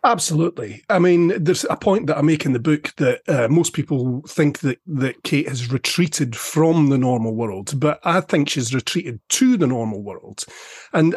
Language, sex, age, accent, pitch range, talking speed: English, male, 30-49, British, 135-175 Hz, 195 wpm